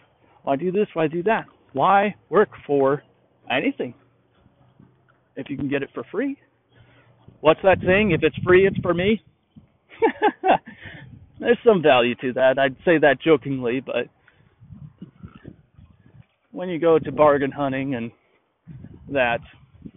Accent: American